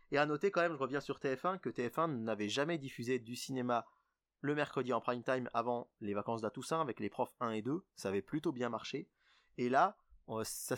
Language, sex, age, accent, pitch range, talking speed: French, male, 20-39, French, 115-150 Hz, 215 wpm